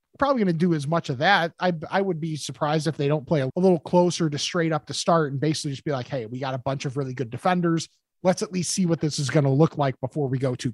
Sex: male